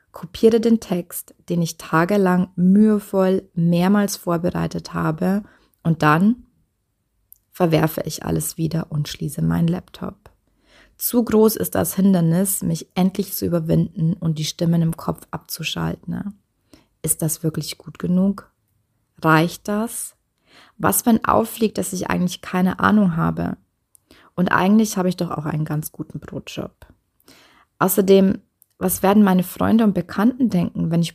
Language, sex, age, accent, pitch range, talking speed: German, female, 20-39, German, 155-195 Hz, 135 wpm